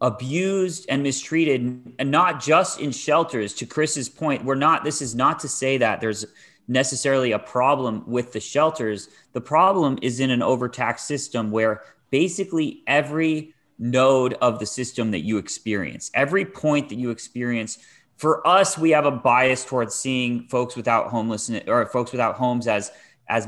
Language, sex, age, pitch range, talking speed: English, male, 30-49, 105-135 Hz, 165 wpm